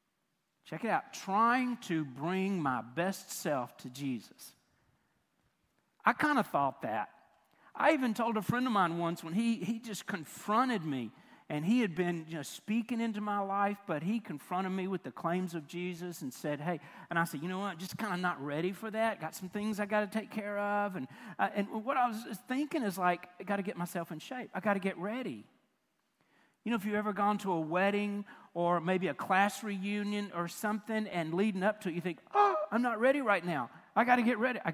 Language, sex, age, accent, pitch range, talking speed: English, male, 50-69, American, 180-230 Hz, 225 wpm